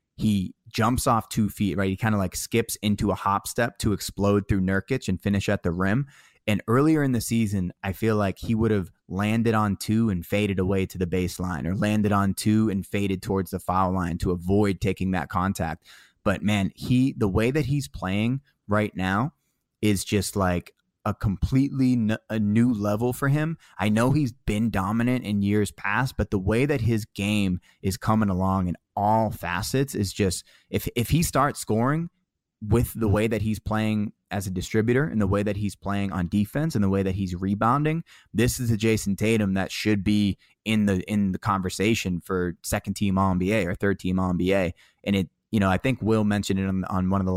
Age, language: 20-39, English